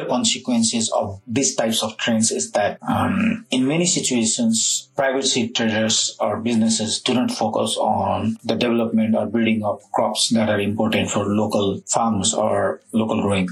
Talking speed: 155 wpm